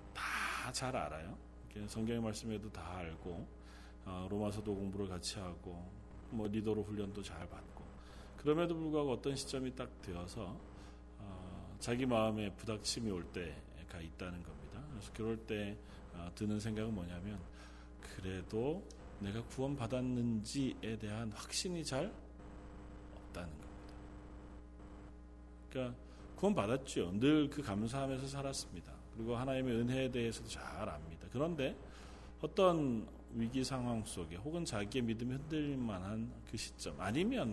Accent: native